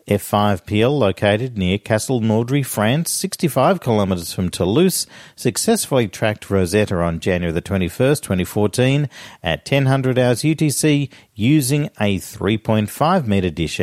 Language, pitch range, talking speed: English, 100-145 Hz, 135 wpm